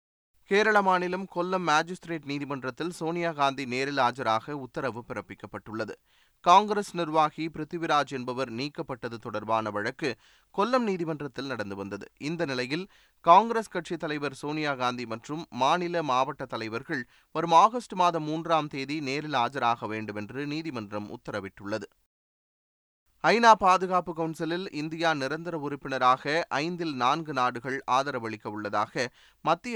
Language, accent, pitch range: Tamil, native, 125-165 Hz